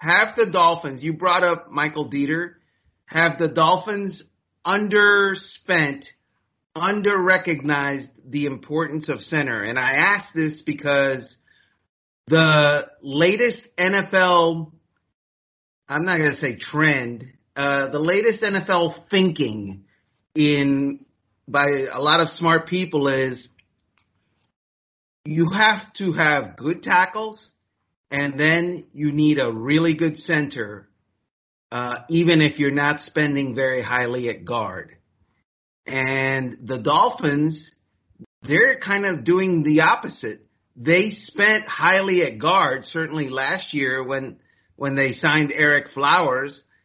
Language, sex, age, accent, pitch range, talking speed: English, male, 30-49, American, 135-170 Hz, 115 wpm